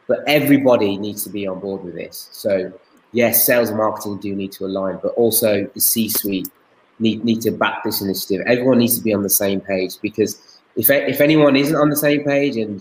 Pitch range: 100-130 Hz